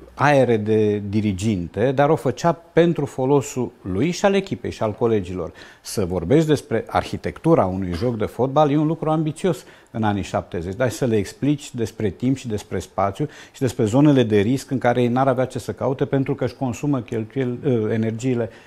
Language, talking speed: Romanian, 185 wpm